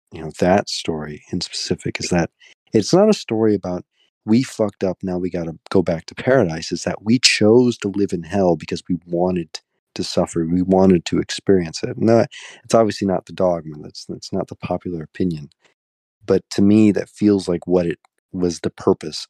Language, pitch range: English, 80-105 Hz